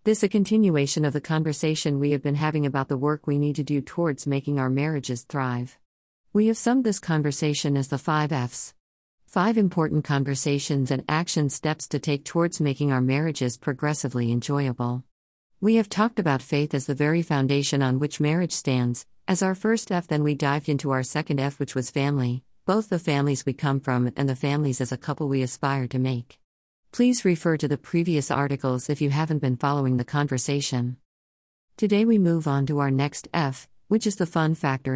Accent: American